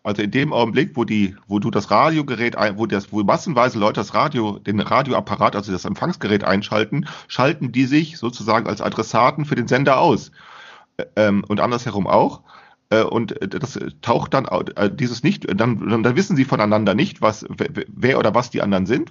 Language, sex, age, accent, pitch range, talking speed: German, male, 40-59, German, 100-125 Hz, 180 wpm